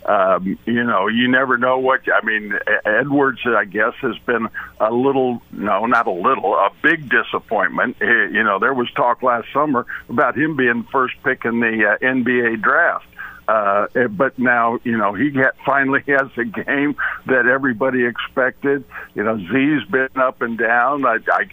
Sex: male